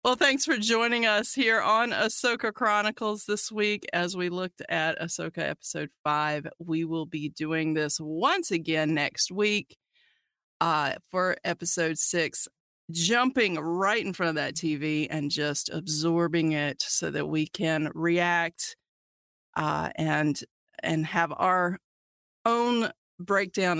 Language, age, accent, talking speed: English, 40-59, American, 135 wpm